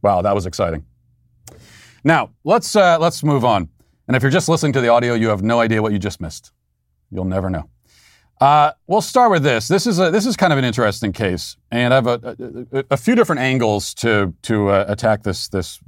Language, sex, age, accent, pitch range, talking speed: English, male, 40-59, American, 105-150 Hz, 225 wpm